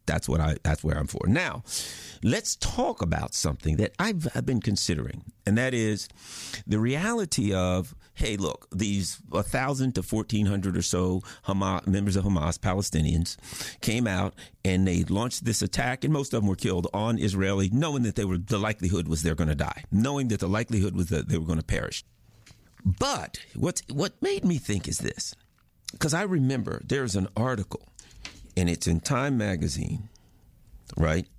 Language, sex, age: English, male, 50-69